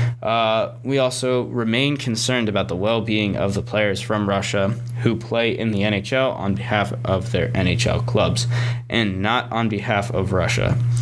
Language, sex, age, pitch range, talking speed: English, male, 20-39, 110-120 Hz, 165 wpm